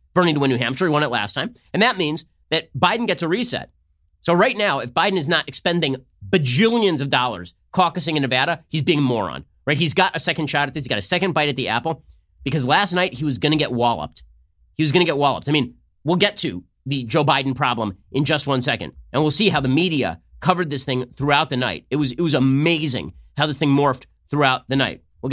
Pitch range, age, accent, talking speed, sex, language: 115-150 Hz, 30-49, American, 250 wpm, male, English